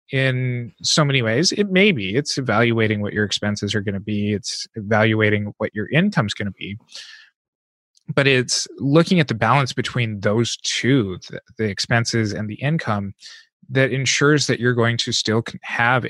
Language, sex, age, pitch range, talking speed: English, male, 20-39, 105-130 Hz, 175 wpm